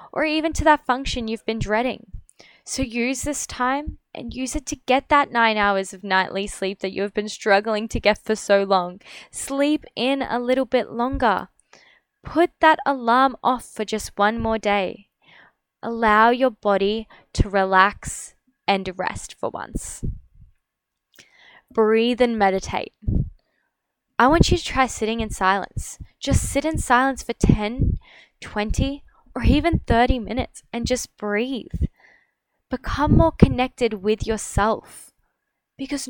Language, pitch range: English, 205-255 Hz